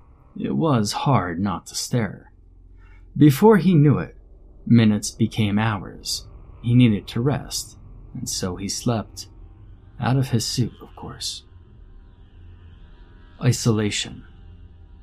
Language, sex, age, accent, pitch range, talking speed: English, male, 30-49, American, 90-125 Hz, 110 wpm